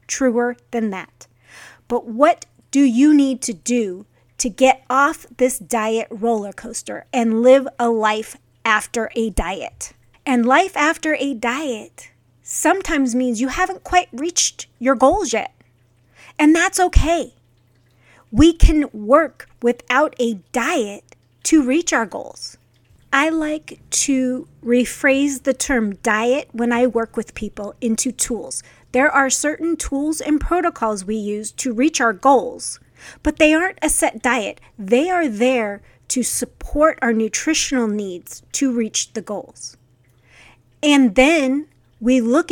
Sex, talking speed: female, 140 wpm